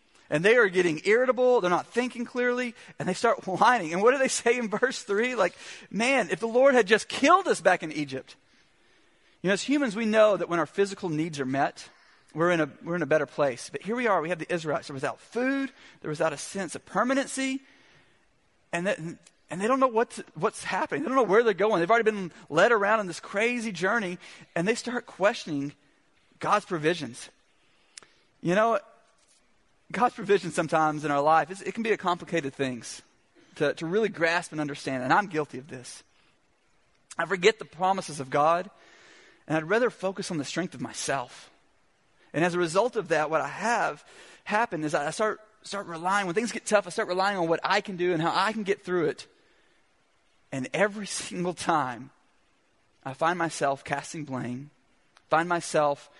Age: 40-59